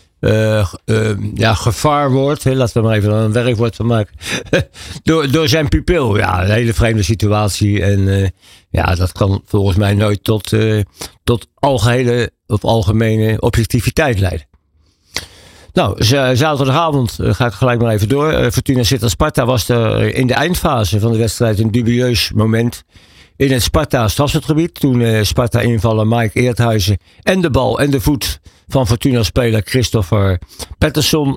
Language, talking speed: Dutch, 155 wpm